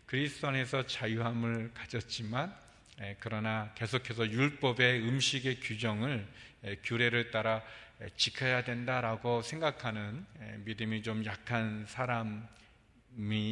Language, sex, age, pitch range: Korean, male, 40-59, 110-125 Hz